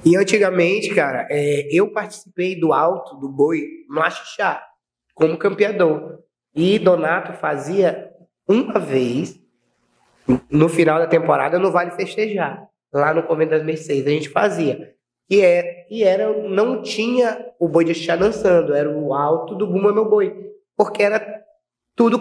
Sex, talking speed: male, 150 wpm